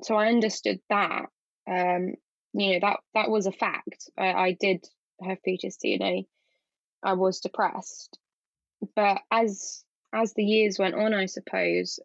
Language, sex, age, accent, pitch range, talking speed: English, female, 10-29, British, 185-210 Hz, 155 wpm